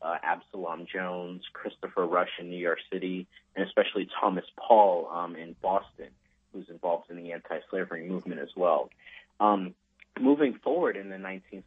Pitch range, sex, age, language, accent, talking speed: 90-105 Hz, male, 30-49, English, American, 155 wpm